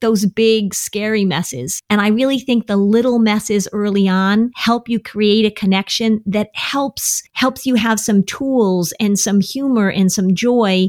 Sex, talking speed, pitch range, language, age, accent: female, 170 wpm, 175-245 Hz, English, 40-59, American